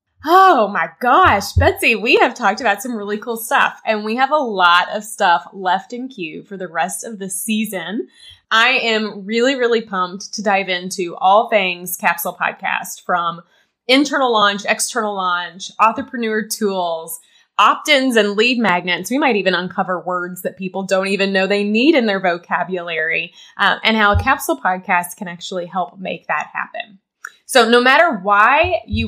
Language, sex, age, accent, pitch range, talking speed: English, female, 20-39, American, 185-240 Hz, 170 wpm